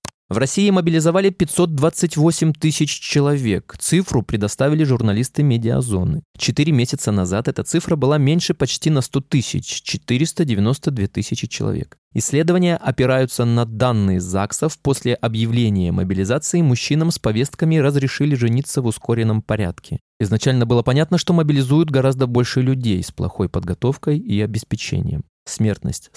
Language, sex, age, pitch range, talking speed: Russian, male, 20-39, 110-150 Hz, 125 wpm